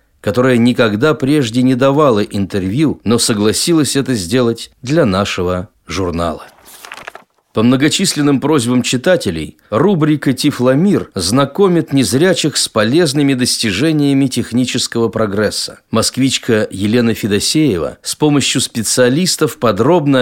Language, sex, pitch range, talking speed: Russian, male, 115-150 Hz, 100 wpm